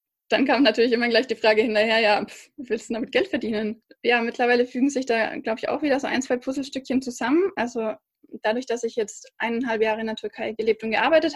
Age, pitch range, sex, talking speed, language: 20-39, 230-270 Hz, female, 215 wpm, German